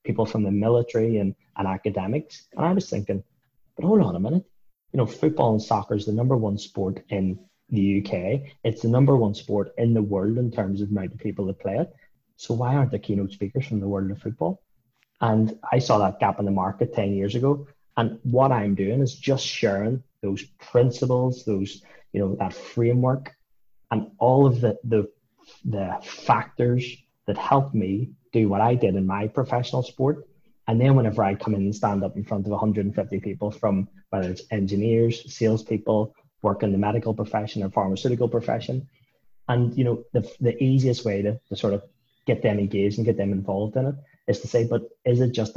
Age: 20-39